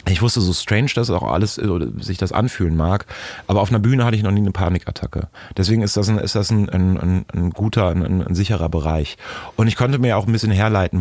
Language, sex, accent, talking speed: German, male, German, 235 wpm